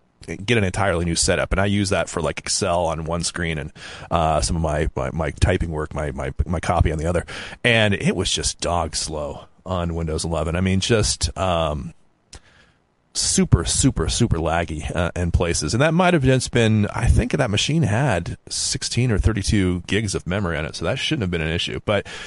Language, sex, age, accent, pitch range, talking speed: English, male, 30-49, American, 85-115 Hz, 210 wpm